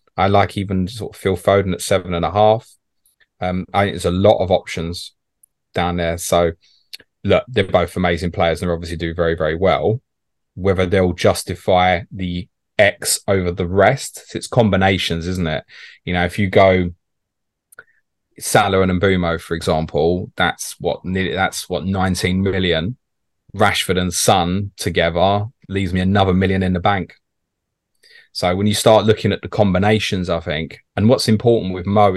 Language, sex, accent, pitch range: Hebrew, male, British, 90-105 Hz